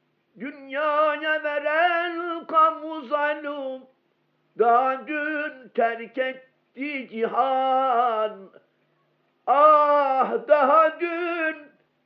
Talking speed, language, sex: 55 wpm, Turkish, male